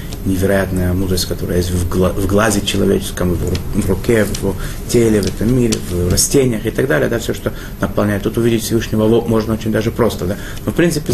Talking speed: 220 wpm